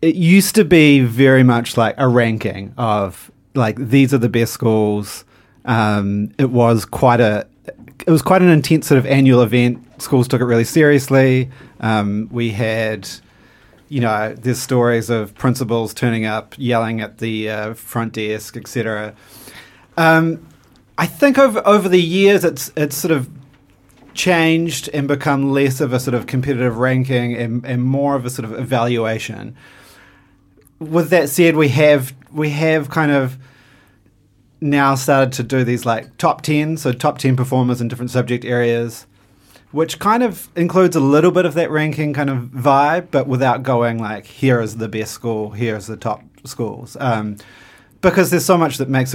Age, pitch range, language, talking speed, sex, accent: 30-49, 115-145 Hz, English, 170 wpm, male, Australian